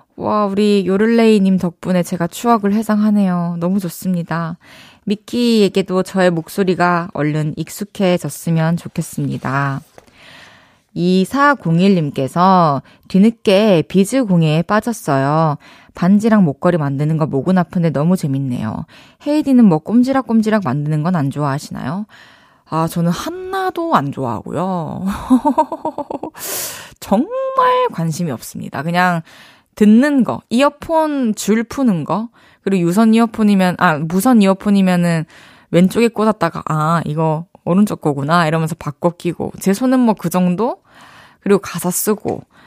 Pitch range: 160-220 Hz